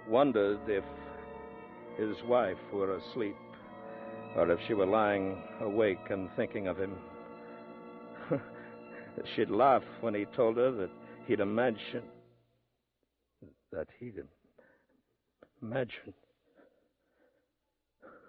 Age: 60-79